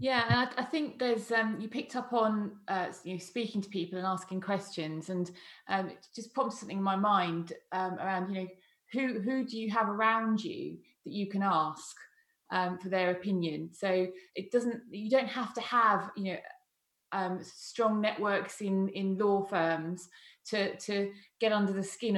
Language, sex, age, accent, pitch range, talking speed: English, female, 20-39, British, 180-210 Hz, 190 wpm